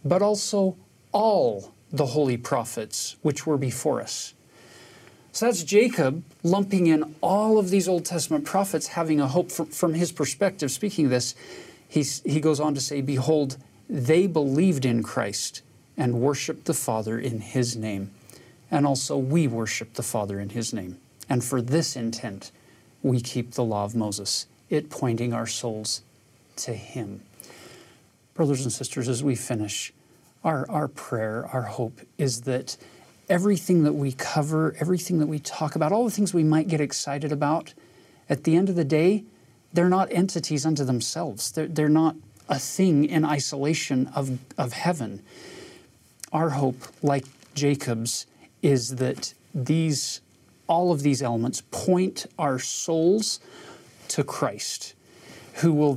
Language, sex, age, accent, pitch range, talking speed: English, male, 40-59, American, 120-160 Hz, 155 wpm